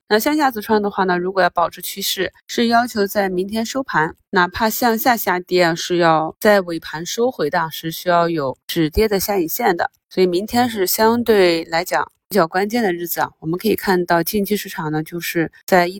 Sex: female